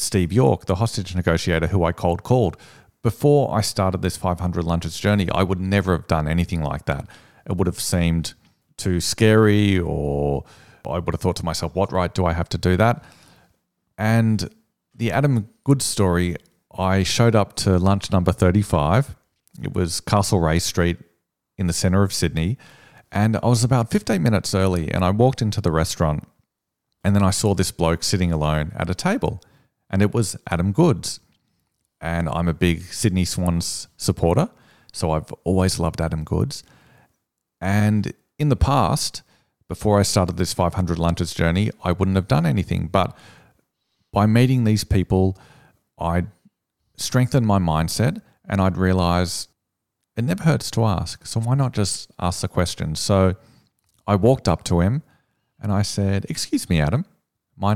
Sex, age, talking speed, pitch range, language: male, 40-59, 170 wpm, 85-110 Hz, English